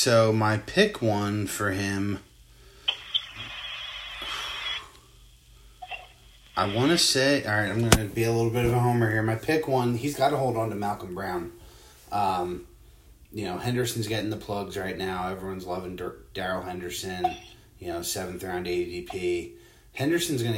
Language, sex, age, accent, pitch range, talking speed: English, male, 30-49, American, 90-110 Hz, 155 wpm